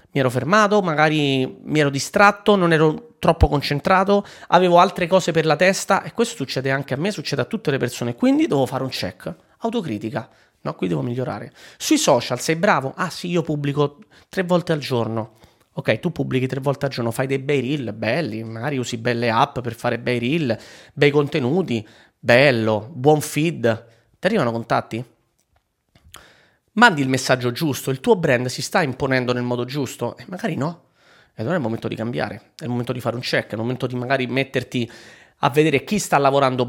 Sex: male